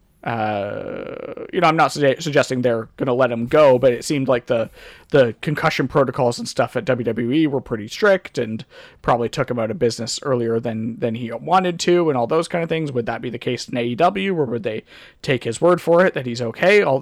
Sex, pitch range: male, 125-170 Hz